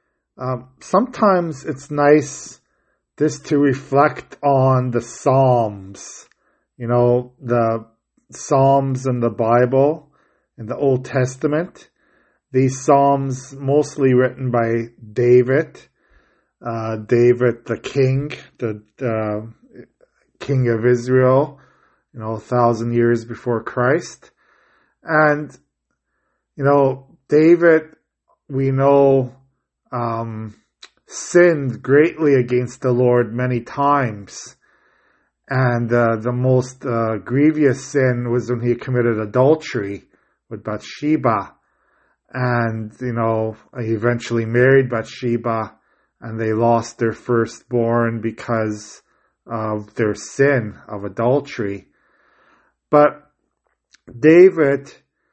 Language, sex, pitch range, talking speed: English, male, 115-140 Hz, 100 wpm